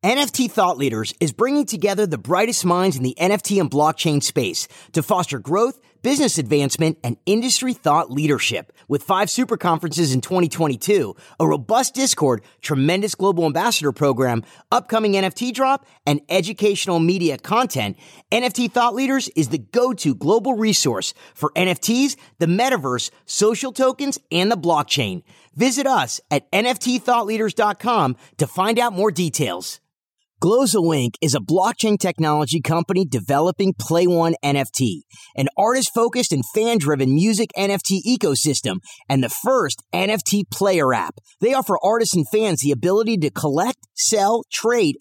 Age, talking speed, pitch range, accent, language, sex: 30-49, 135 wpm, 150-235 Hz, American, English, male